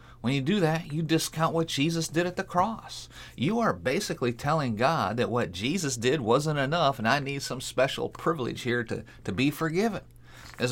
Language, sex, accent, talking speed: English, male, American, 195 wpm